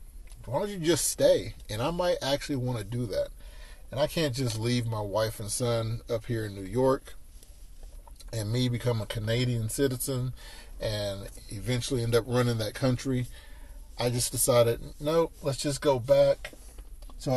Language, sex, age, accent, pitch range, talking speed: English, male, 30-49, American, 110-140 Hz, 170 wpm